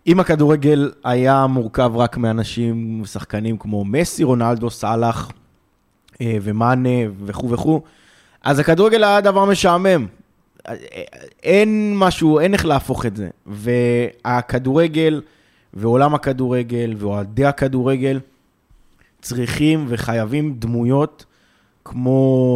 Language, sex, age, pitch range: Hebrew, male, 20-39, 120-150 Hz